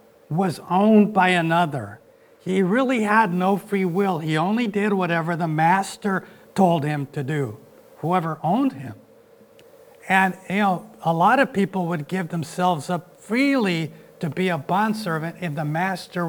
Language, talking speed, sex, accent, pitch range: English, 155 wpm, male, American, 160-210 Hz